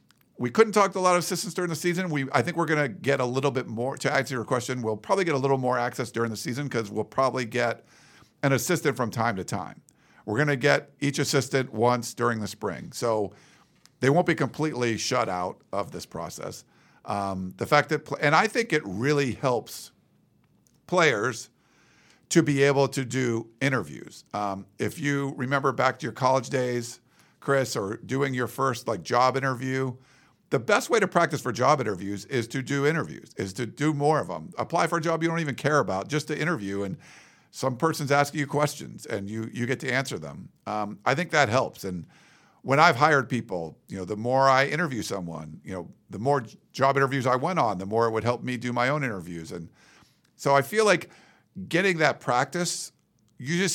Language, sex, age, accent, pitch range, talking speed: English, male, 50-69, American, 120-150 Hz, 210 wpm